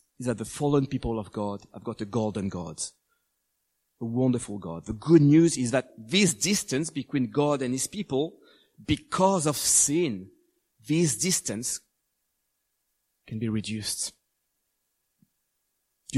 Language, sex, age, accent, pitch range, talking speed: English, male, 40-59, French, 125-170 Hz, 135 wpm